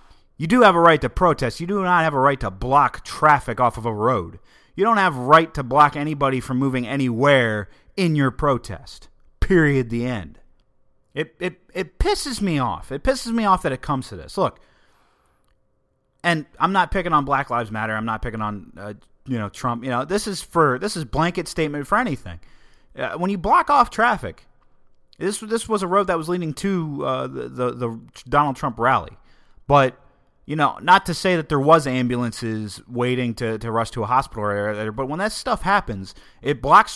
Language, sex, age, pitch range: English, male, 30-49, 120-175 Hz